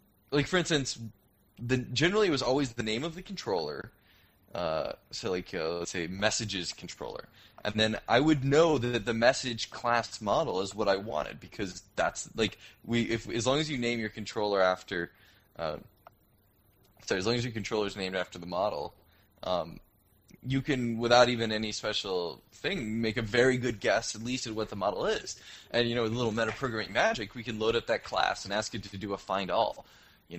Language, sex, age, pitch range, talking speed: English, male, 20-39, 95-120 Hz, 205 wpm